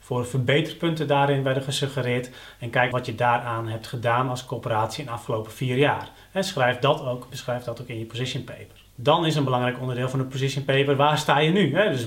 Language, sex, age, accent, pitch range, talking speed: Dutch, male, 30-49, Dutch, 120-140 Hz, 215 wpm